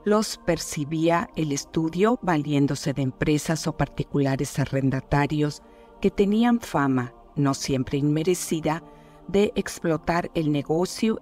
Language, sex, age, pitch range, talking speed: Spanish, female, 50-69, 145-175 Hz, 105 wpm